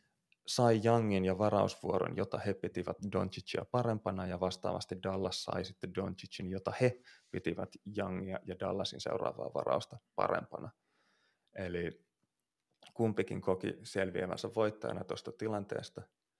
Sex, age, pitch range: male, 30-49, 90-110 Hz